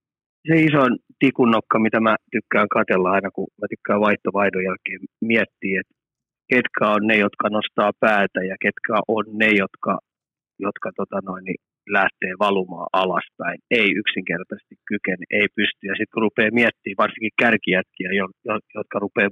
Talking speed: 145 wpm